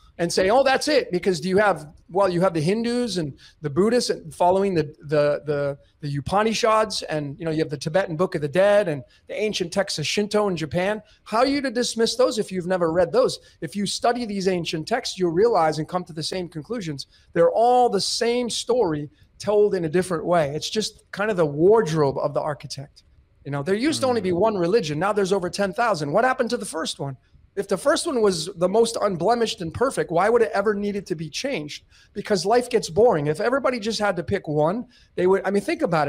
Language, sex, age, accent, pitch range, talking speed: English, male, 40-59, American, 155-210 Hz, 240 wpm